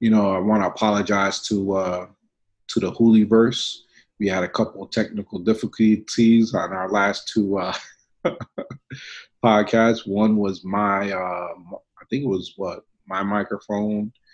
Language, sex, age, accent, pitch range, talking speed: English, male, 30-49, American, 95-115 Hz, 145 wpm